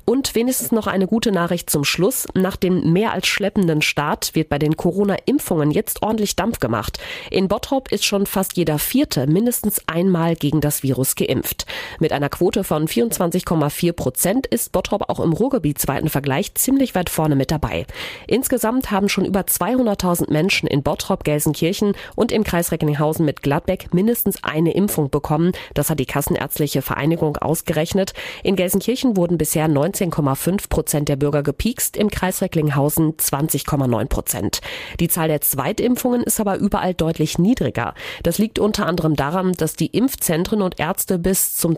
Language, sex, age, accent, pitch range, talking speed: German, female, 30-49, German, 150-205 Hz, 160 wpm